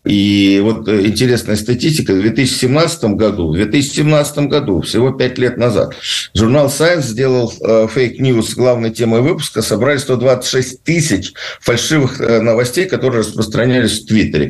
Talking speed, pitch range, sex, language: 130 wpm, 95-125 Hz, male, Russian